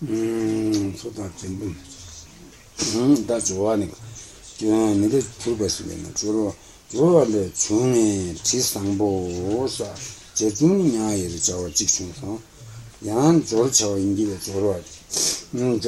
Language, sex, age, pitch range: Italian, male, 60-79, 95-120 Hz